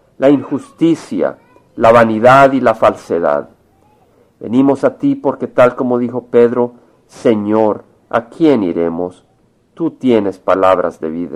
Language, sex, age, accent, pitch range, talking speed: Spanish, male, 50-69, Mexican, 110-150 Hz, 125 wpm